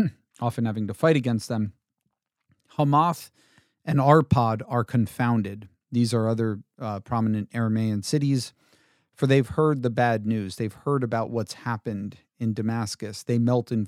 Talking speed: 145 wpm